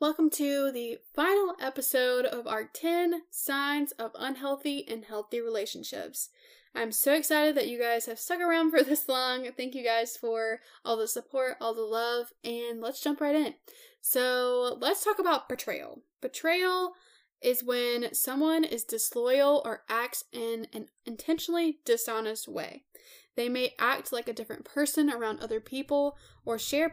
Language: English